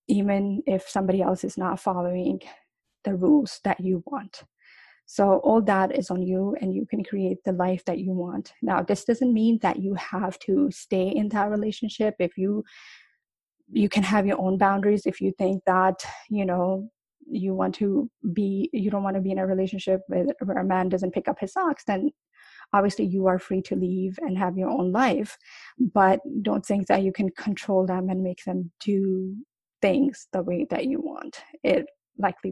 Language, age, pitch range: English, 20-39, 185-225 Hz